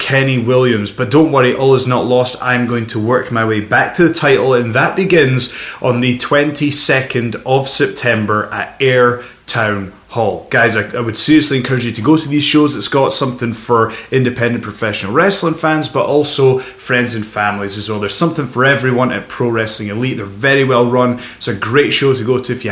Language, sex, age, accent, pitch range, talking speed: English, male, 20-39, British, 115-140 Hz, 205 wpm